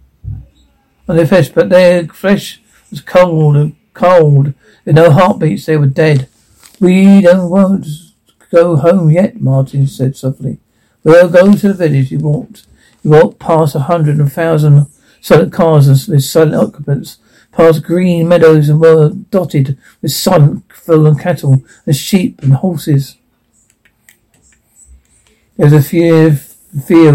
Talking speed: 145 wpm